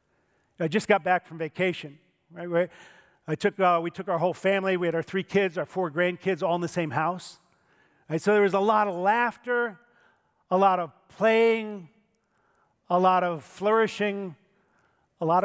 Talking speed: 180 wpm